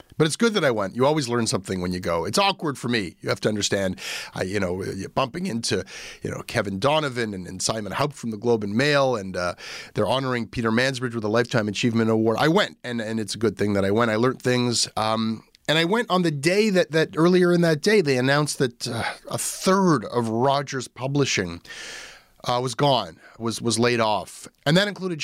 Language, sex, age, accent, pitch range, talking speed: English, male, 30-49, American, 100-135 Hz, 225 wpm